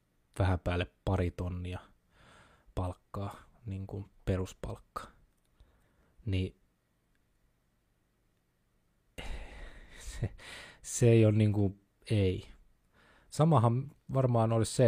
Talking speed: 85 wpm